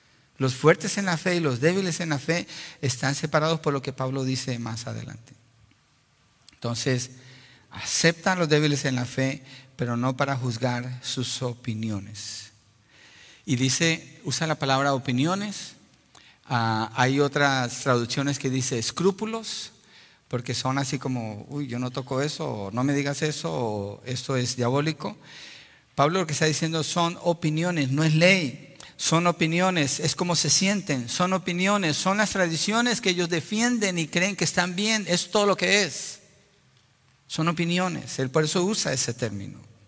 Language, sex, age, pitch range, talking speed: Spanish, male, 50-69, 120-160 Hz, 155 wpm